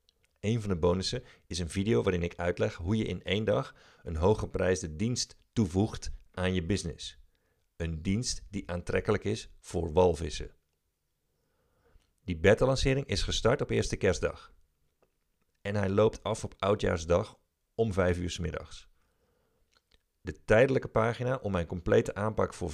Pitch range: 85-105 Hz